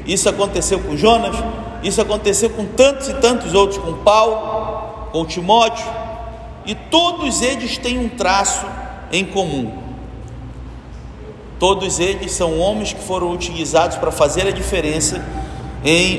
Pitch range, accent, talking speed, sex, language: 165-215 Hz, Brazilian, 130 wpm, male, Portuguese